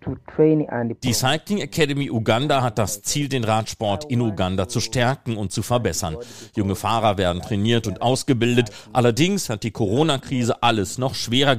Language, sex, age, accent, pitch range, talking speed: German, male, 40-59, German, 105-140 Hz, 150 wpm